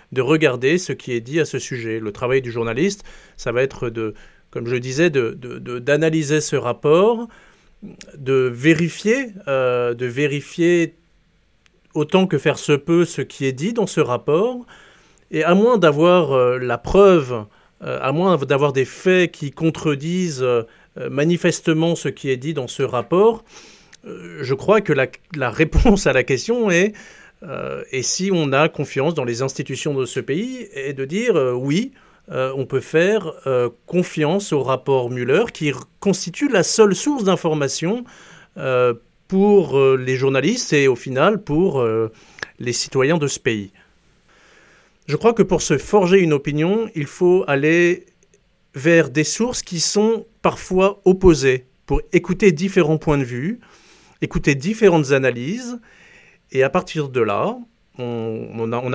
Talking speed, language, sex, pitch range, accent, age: 165 wpm, English, male, 130-185 Hz, French, 40-59